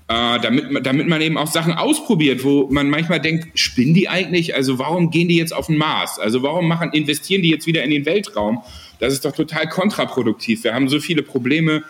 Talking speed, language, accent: 215 wpm, German, German